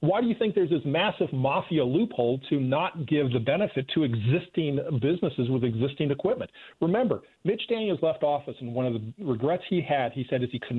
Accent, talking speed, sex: American, 205 wpm, male